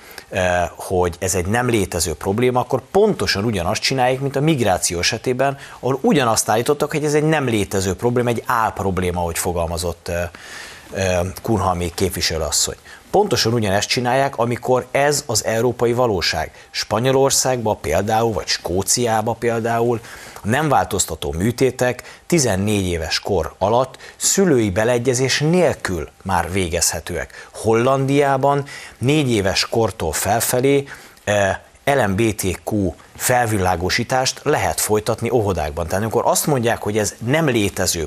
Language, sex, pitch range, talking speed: Hungarian, male, 95-130 Hz, 120 wpm